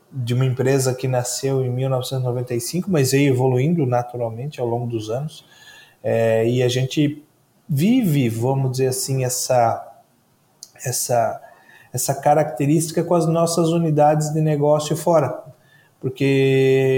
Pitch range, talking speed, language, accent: 130-160 Hz, 125 wpm, Portuguese, Brazilian